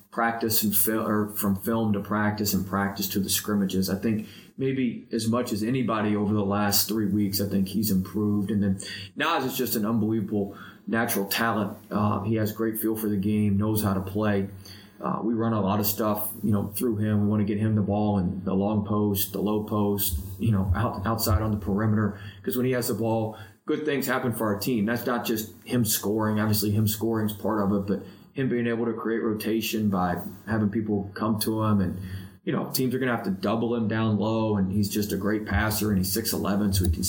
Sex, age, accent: male, 20-39, American